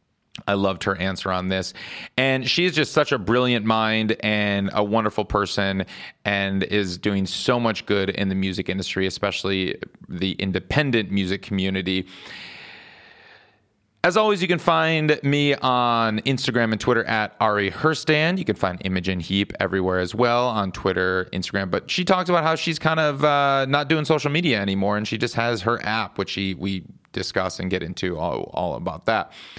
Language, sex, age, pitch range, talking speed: English, male, 30-49, 105-145 Hz, 180 wpm